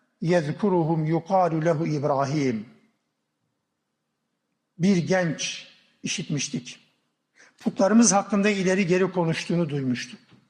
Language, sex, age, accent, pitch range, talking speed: Turkish, male, 60-79, native, 165-205 Hz, 75 wpm